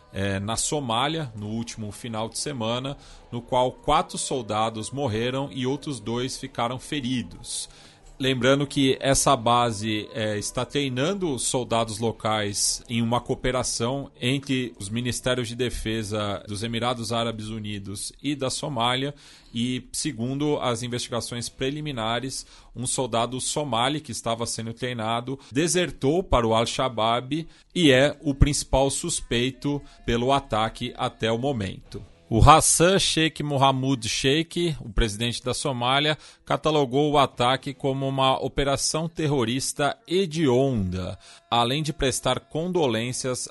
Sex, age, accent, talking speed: male, 40-59, Brazilian, 120 wpm